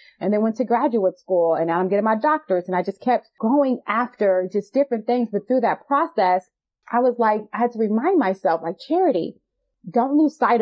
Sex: female